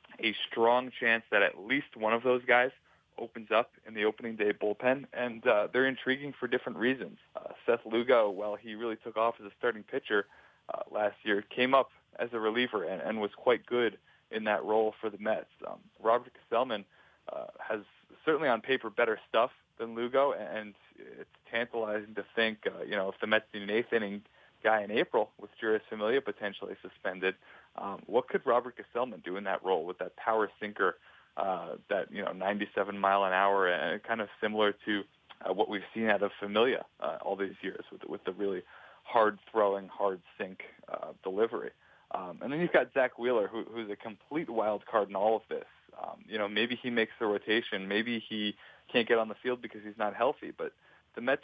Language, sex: English, male